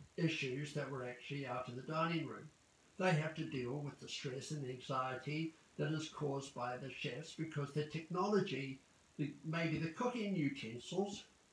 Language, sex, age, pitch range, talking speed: English, male, 60-79, 140-180 Hz, 160 wpm